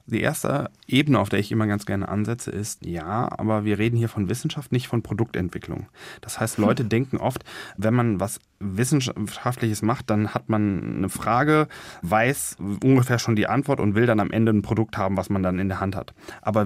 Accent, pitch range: German, 105-140 Hz